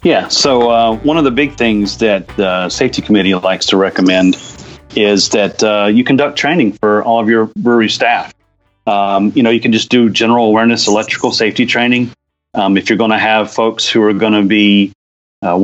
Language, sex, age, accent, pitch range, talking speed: English, male, 30-49, American, 100-120 Hz, 200 wpm